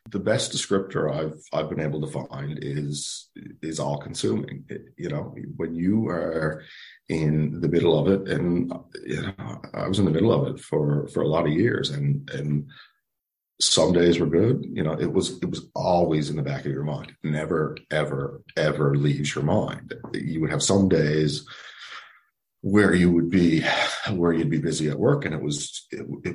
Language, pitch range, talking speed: English, 75-85 Hz, 190 wpm